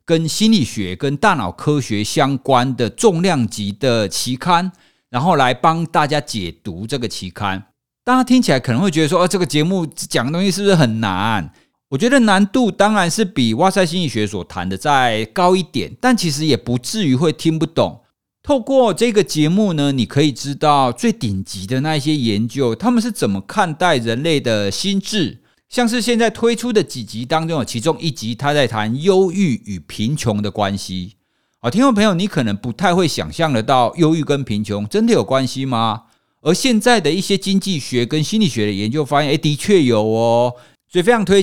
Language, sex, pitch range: Chinese, male, 115-185 Hz